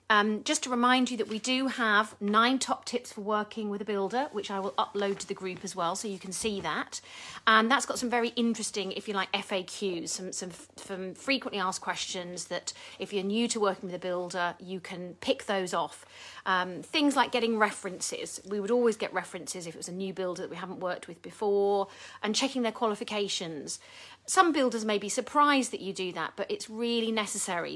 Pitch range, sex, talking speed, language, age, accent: 185-235 Hz, female, 220 wpm, English, 40-59, British